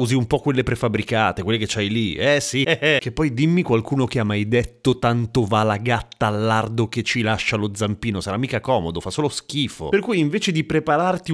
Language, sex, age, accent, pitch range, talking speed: Italian, male, 30-49, native, 110-150 Hz, 220 wpm